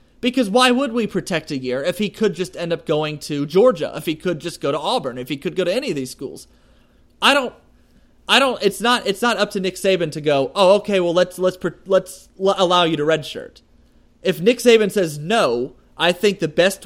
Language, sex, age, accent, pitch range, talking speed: English, male, 30-49, American, 150-200 Hz, 230 wpm